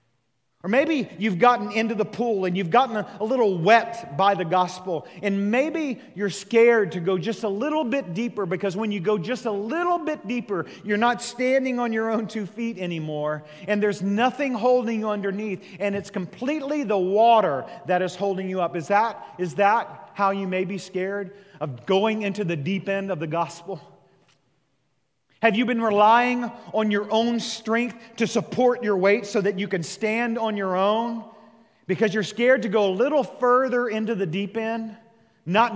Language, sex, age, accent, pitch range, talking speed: English, male, 40-59, American, 185-225 Hz, 190 wpm